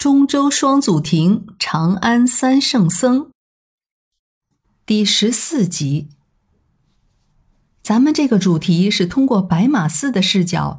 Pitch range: 165-230 Hz